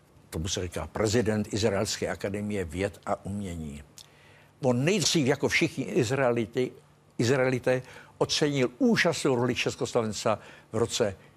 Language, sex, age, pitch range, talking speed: Czech, male, 60-79, 110-155 Hz, 105 wpm